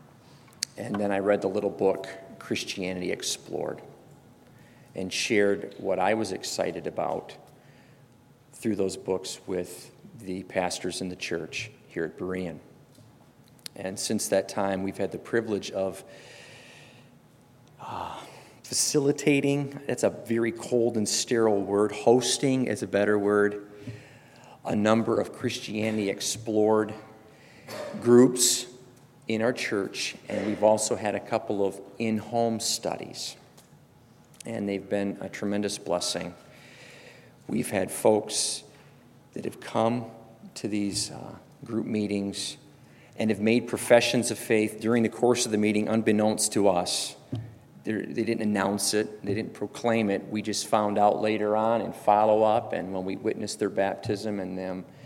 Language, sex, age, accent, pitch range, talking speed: English, male, 40-59, American, 100-115 Hz, 135 wpm